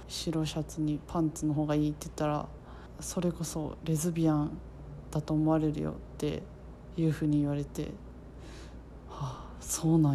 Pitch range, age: 145-175 Hz, 20-39